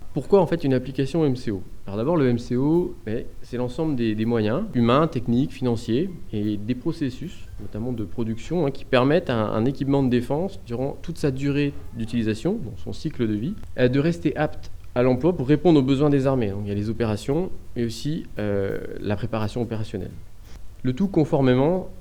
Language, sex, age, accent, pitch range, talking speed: French, male, 20-39, French, 105-145 Hz, 190 wpm